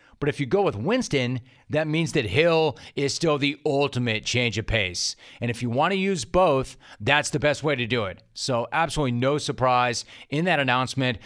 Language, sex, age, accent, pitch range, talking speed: English, male, 40-59, American, 115-150 Hz, 205 wpm